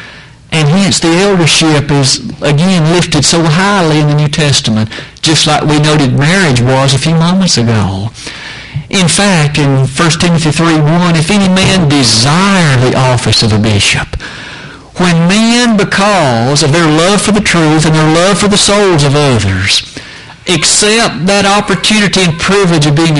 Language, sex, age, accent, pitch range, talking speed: English, male, 60-79, American, 135-180 Hz, 165 wpm